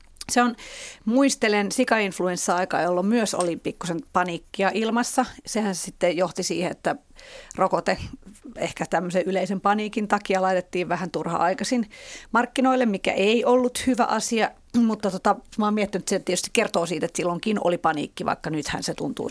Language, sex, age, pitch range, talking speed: Finnish, female, 40-59, 175-225 Hz, 150 wpm